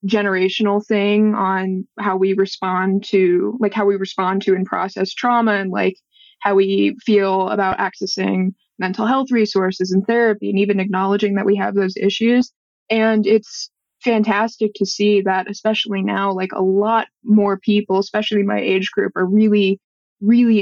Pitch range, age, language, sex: 195-220 Hz, 20-39, English, female